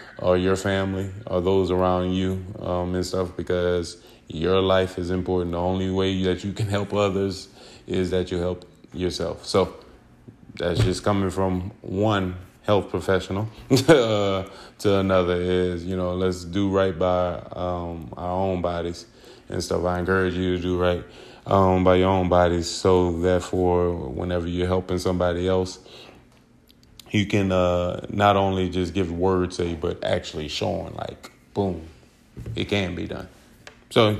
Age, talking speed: 20-39, 155 wpm